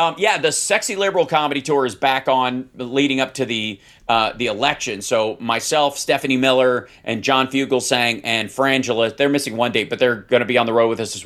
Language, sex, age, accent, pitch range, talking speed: English, male, 40-59, American, 110-135 Hz, 220 wpm